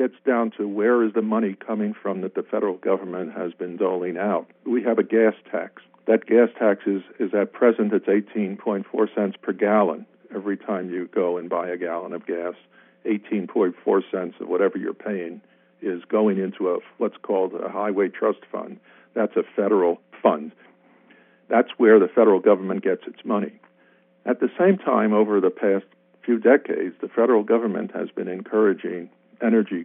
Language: English